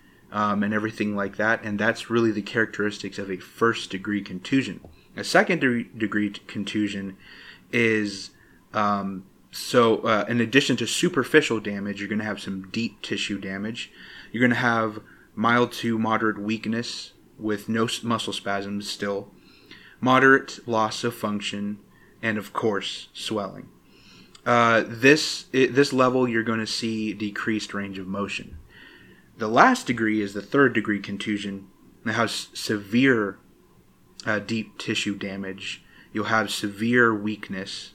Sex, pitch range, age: male, 100-120 Hz, 30-49